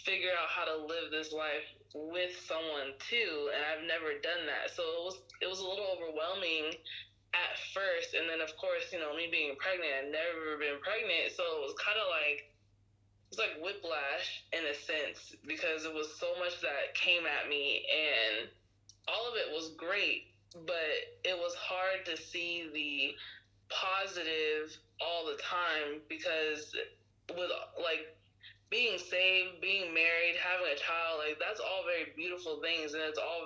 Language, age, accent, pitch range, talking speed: English, 20-39, American, 150-190 Hz, 170 wpm